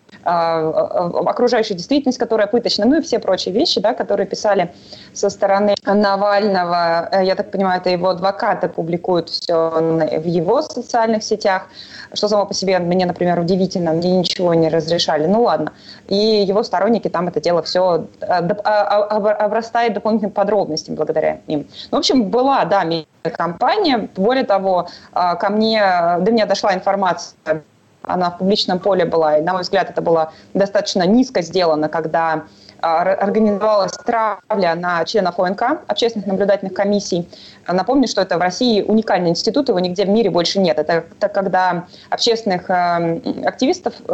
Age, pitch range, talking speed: 20-39, 175-215 Hz, 145 wpm